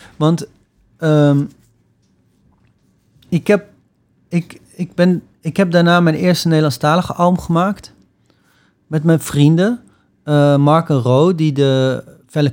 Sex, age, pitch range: male, 30-49, 125-155 Hz